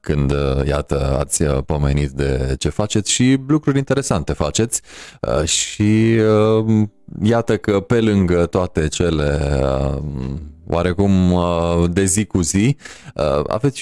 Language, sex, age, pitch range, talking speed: Romanian, male, 20-39, 80-115 Hz, 105 wpm